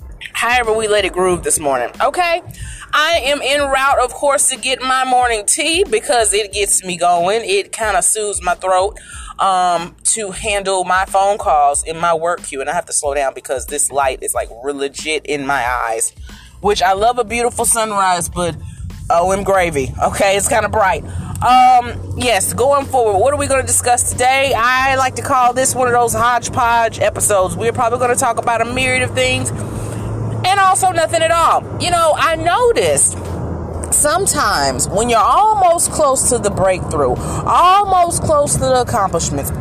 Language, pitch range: English, 175-285 Hz